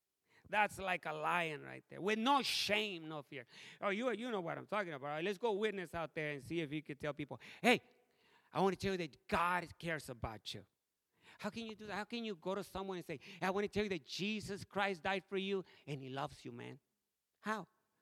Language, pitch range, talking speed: English, 190-285 Hz, 245 wpm